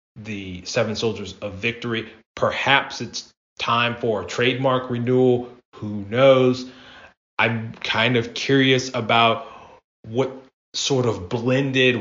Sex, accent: male, American